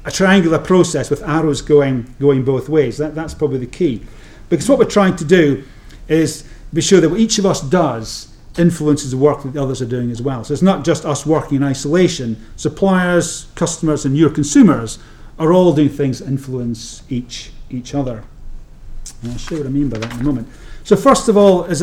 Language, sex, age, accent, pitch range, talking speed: English, male, 40-59, British, 135-170 Hz, 215 wpm